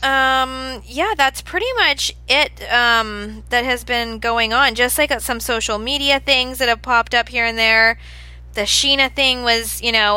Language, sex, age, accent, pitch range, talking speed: English, female, 20-39, American, 210-255 Hz, 185 wpm